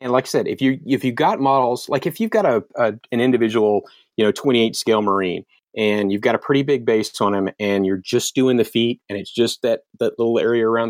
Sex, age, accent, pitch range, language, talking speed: male, 30-49, American, 105-130 Hz, English, 260 wpm